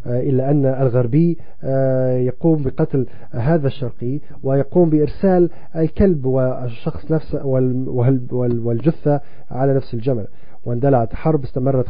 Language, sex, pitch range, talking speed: Arabic, male, 120-155 Hz, 85 wpm